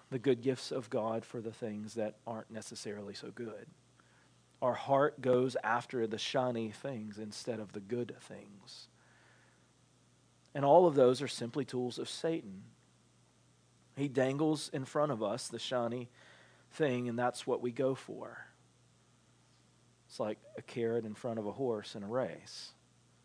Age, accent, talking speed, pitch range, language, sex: 40-59, American, 155 wpm, 115-140 Hz, English, male